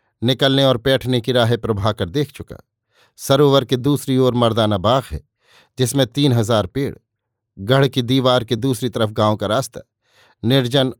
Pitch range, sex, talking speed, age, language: 110-135 Hz, male, 160 wpm, 50-69, Hindi